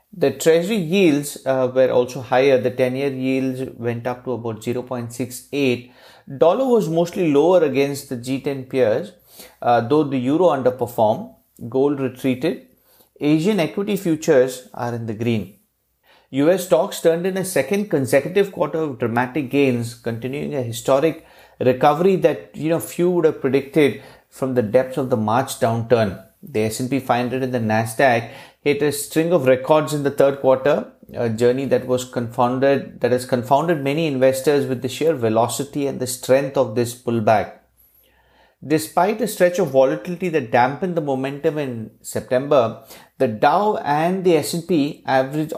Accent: Indian